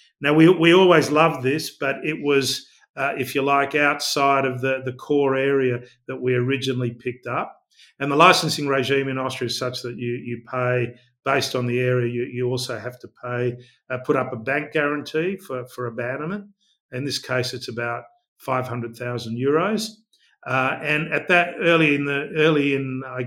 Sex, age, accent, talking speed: male, 50-69, Australian, 190 wpm